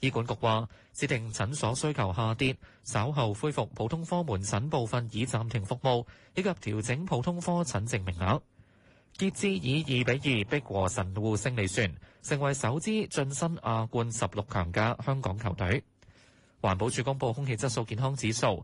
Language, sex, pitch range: Chinese, male, 105-140 Hz